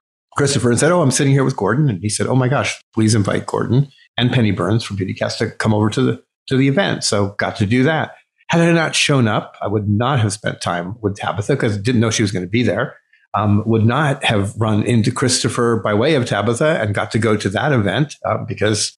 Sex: male